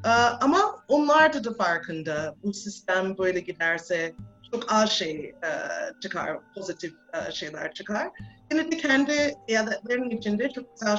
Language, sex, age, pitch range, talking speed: Turkish, female, 30-49, 175-275 Hz, 140 wpm